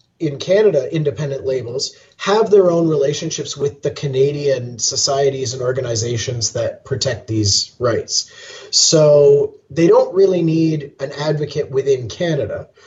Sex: male